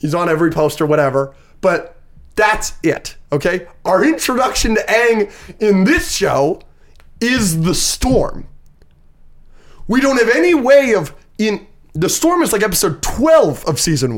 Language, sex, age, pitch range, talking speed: English, male, 20-39, 175-280 Hz, 150 wpm